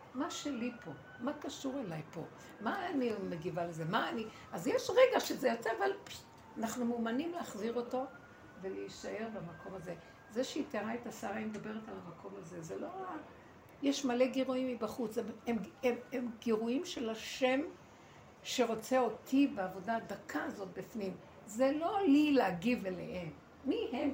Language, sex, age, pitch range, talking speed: Hebrew, female, 60-79, 190-260 Hz, 160 wpm